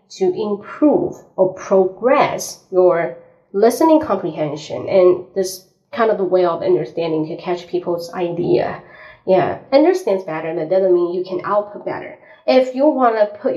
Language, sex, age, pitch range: Chinese, female, 30-49, 185-225 Hz